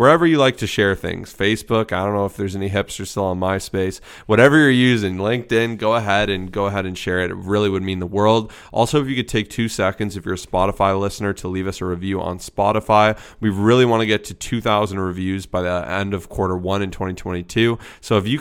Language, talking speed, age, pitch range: English, 240 wpm, 20-39, 95-115 Hz